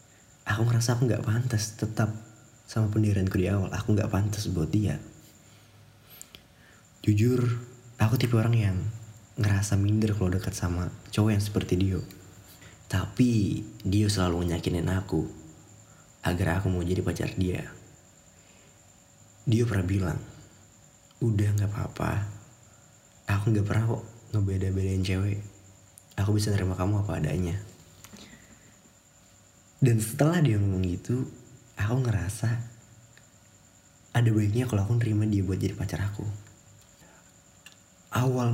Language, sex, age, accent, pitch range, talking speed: Indonesian, male, 30-49, native, 95-110 Hz, 120 wpm